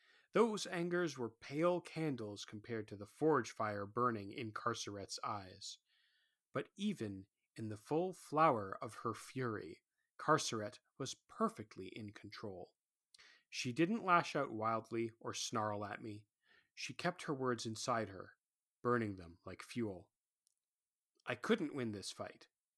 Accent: American